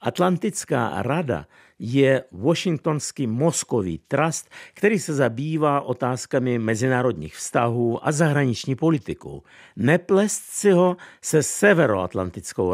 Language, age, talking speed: Czech, 50-69, 95 wpm